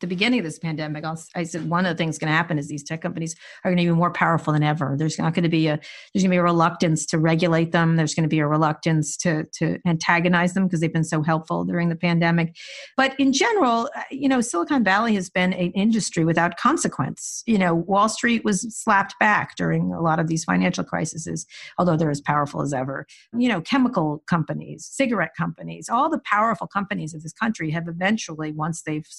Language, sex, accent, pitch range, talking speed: English, female, American, 160-215 Hz, 225 wpm